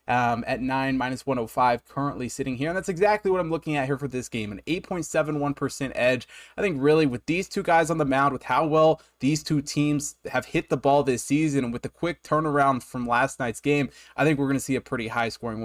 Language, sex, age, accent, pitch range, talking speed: English, male, 20-39, American, 125-155 Hz, 240 wpm